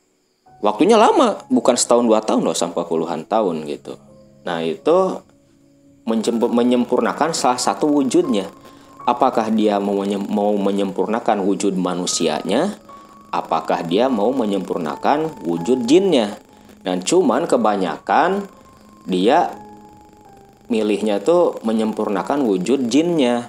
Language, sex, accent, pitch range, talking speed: Indonesian, male, native, 100-125 Hz, 95 wpm